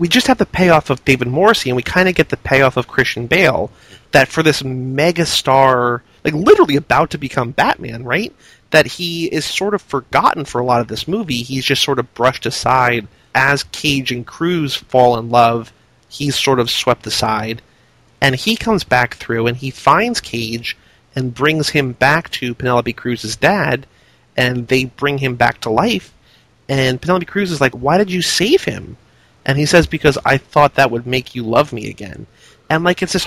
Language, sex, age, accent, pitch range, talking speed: English, male, 30-49, American, 125-155 Hz, 200 wpm